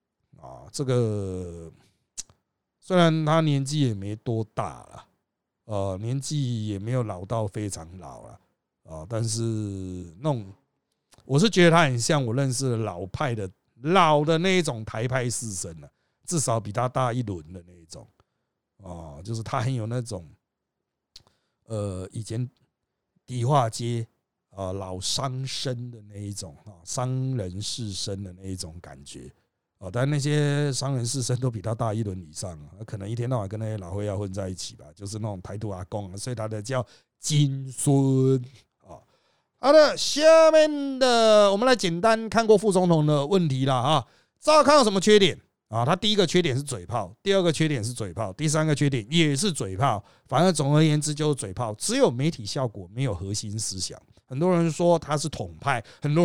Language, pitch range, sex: Chinese, 105-150 Hz, male